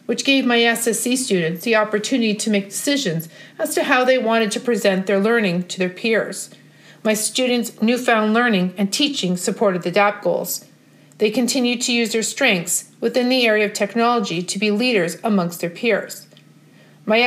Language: English